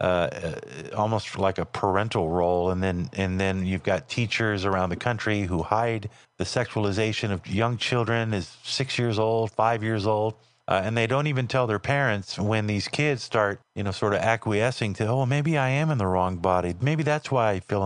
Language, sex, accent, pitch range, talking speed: English, male, American, 105-135 Hz, 205 wpm